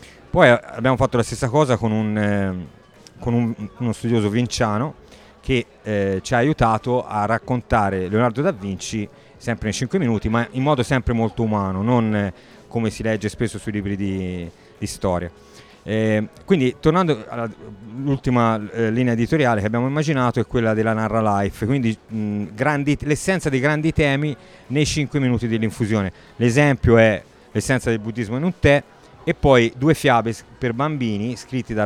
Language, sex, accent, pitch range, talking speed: Italian, male, native, 105-130 Hz, 165 wpm